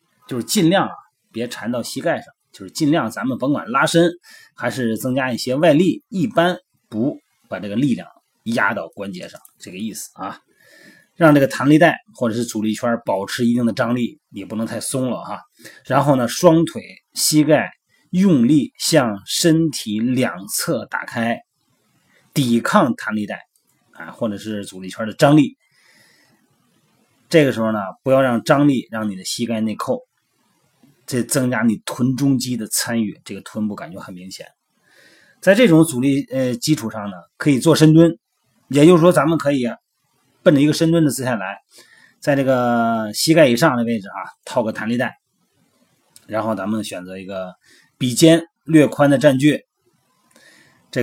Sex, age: male, 30-49